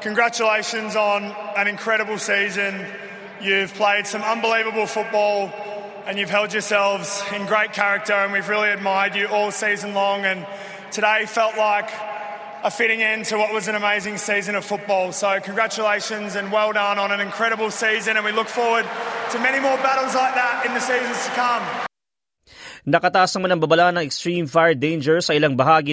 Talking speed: 175 wpm